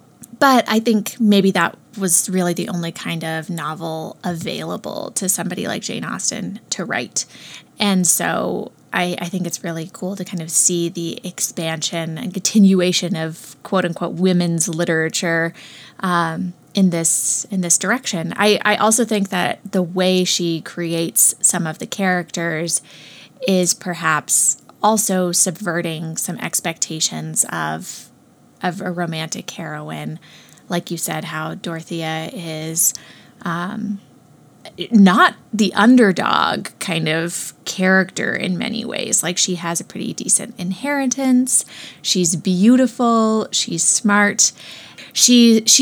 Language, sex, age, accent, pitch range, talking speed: English, female, 20-39, American, 170-205 Hz, 125 wpm